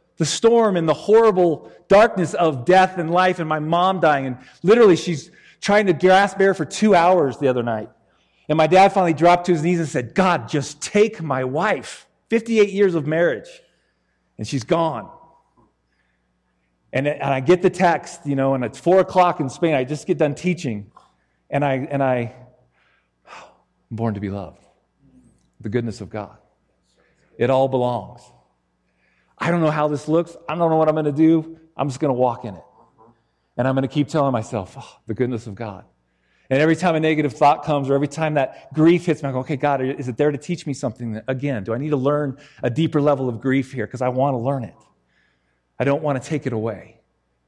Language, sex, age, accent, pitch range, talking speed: English, male, 40-59, American, 120-170 Hz, 210 wpm